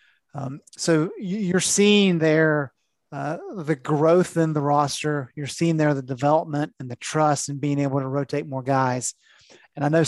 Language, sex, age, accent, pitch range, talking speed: English, male, 30-49, American, 145-175 Hz, 175 wpm